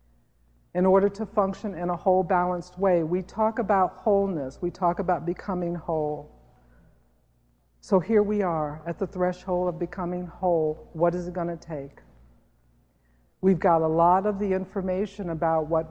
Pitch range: 155-200 Hz